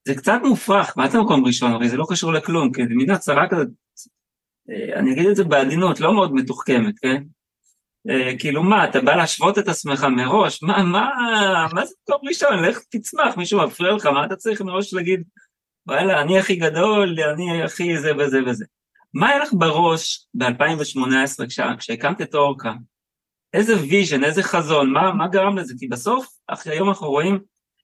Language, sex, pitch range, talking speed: Hebrew, male, 140-200 Hz, 170 wpm